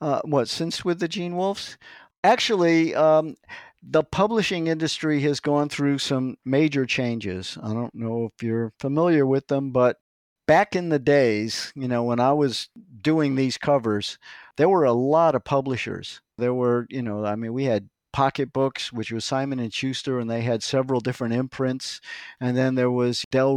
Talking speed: 180 wpm